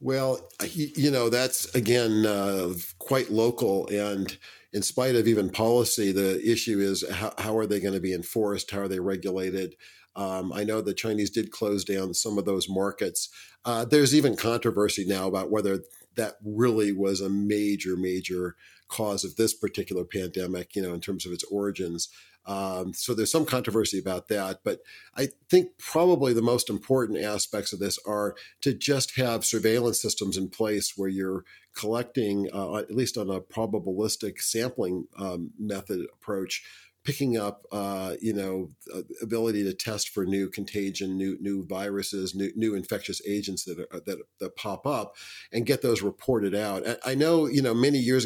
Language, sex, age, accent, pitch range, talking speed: English, male, 50-69, American, 95-115 Hz, 175 wpm